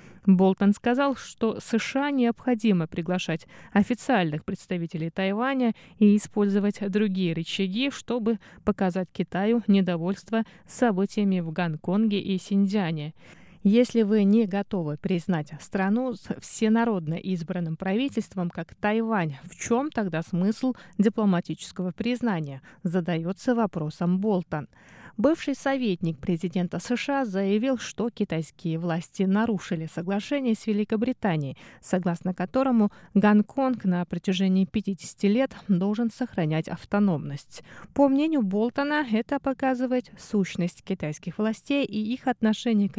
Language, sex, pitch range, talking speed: Russian, female, 175-225 Hz, 105 wpm